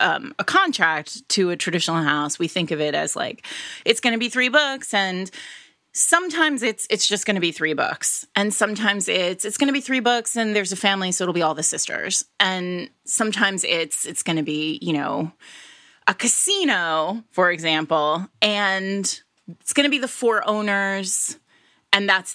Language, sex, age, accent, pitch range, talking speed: English, female, 30-49, American, 175-245 Hz, 190 wpm